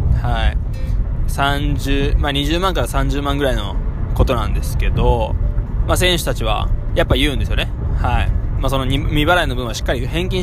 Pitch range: 100-125 Hz